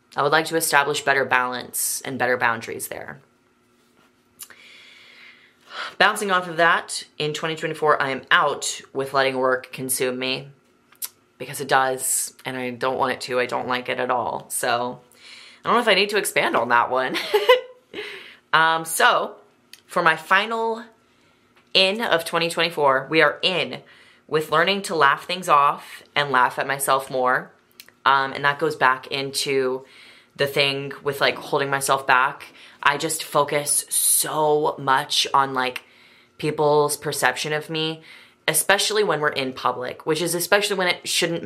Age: 30-49